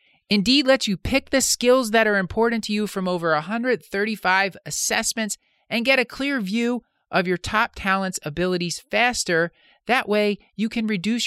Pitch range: 155-220 Hz